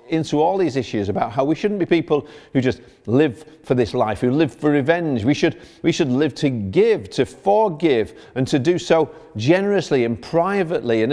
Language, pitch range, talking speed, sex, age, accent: English, 115-160 Hz, 195 wpm, male, 50-69, British